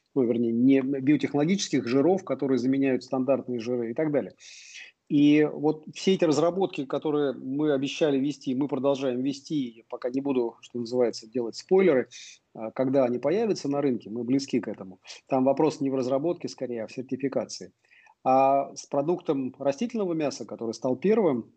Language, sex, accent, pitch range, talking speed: Russian, male, native, 120-140 Hz, 160 wpm